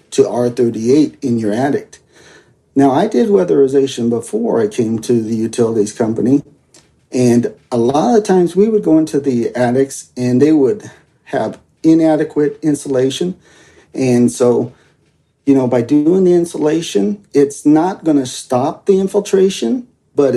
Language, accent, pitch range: English, American, 125-160 Hz